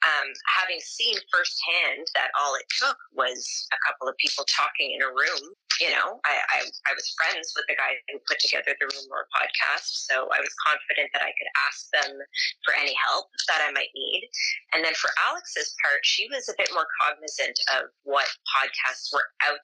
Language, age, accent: English, 30-49, American